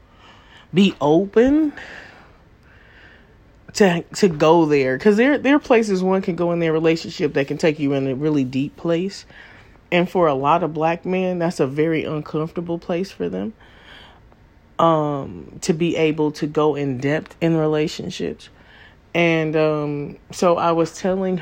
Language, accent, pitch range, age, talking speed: English, American, 145-180 Hz, 30-49, 155 wpm